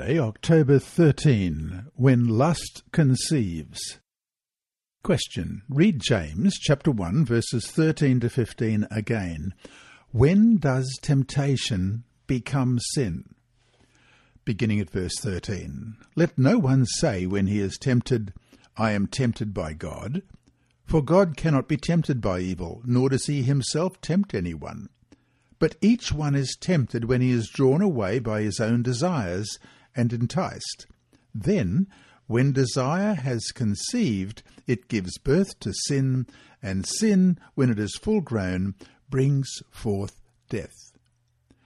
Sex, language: male, English